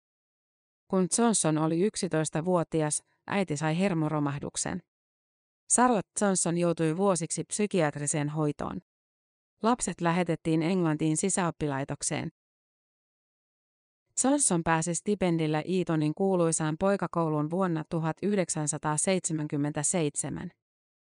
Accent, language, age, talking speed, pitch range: native, Finnish, 30-49, 70 wpm, 155-190 Hz